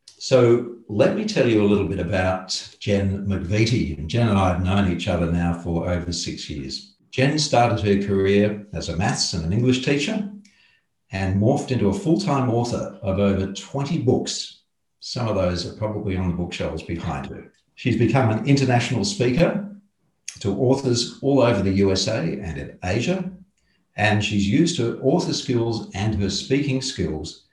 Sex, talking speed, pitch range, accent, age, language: male, 170 wpm, 95-135 Hz, Australian, 50-69, English